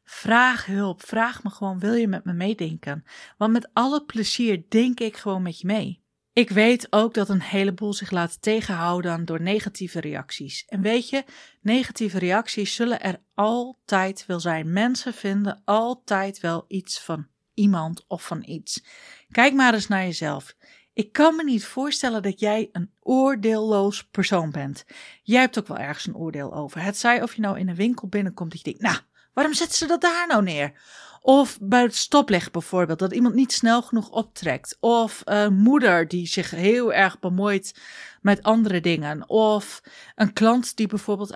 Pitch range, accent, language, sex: 185-235 Hz, Dutch, Dutch, female